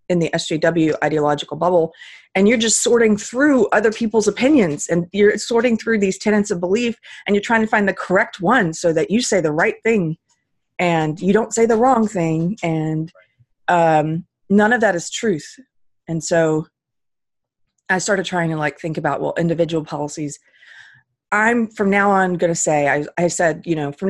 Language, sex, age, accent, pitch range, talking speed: English, female, 30-49, American, 155-220 Hz, 185 wpm